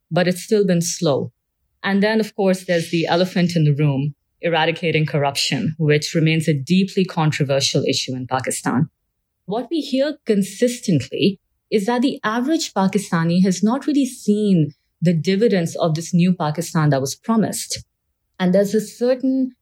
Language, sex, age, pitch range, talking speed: English, female, 30-49, 150-195 Hz, 155 wpm